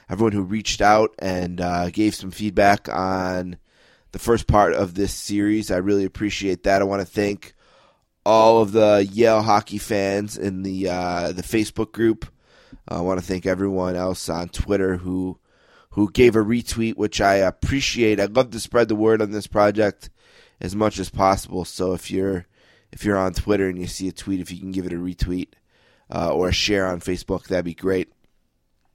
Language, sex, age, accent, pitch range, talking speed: English, male, 20-39, American, 95-110 Hz, 195 wpm